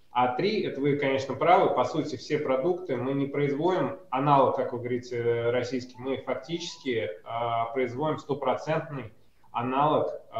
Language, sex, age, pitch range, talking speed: Russian, male, 20-39, 125-145 Hz, 140 wpm